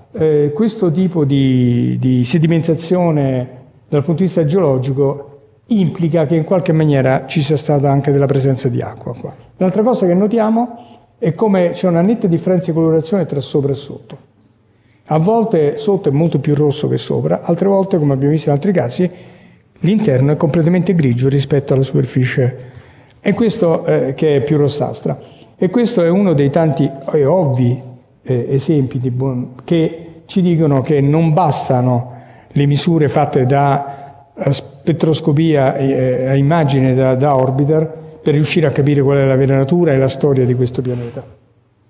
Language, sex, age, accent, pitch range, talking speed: Italian, male, 50-69, native, 135-170 Hz, 160 wpm